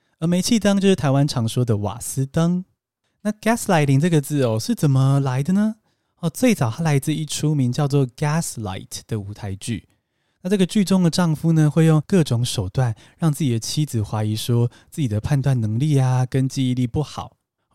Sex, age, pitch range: male, 20-39, 115-165 Hz